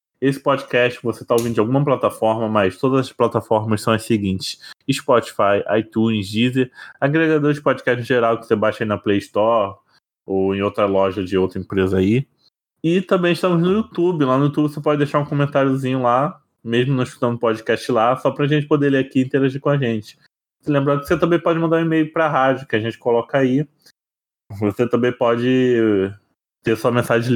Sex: male